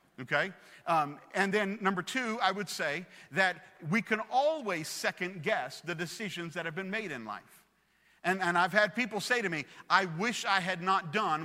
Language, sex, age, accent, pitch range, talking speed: English, male, 50-69, American, 170-210 Hz, 195 wpm